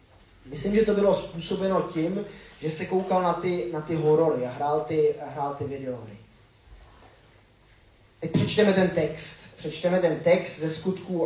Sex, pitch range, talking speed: male, 145-185 Hz, 160 wpm